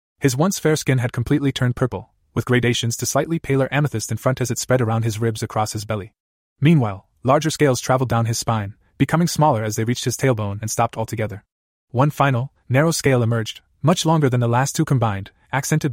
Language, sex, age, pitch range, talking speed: English, male, 20-39, 110-135 Hz, 205 wpm